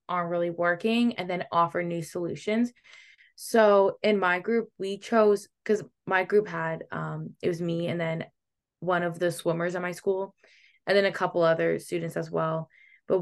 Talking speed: 180 wpm